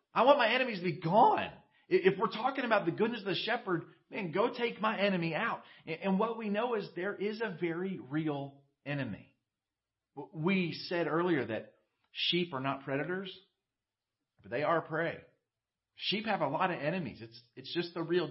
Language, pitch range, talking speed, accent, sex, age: English, 125-170 Hz, 185 wpm, American, male, 40-59